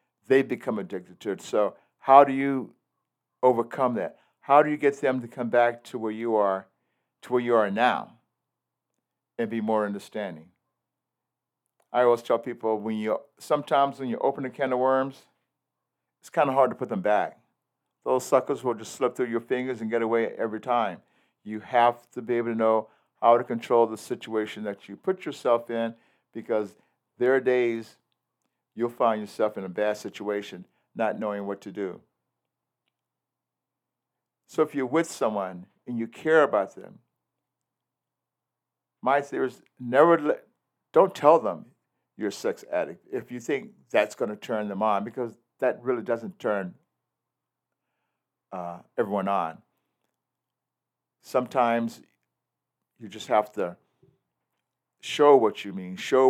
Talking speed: 160 wpm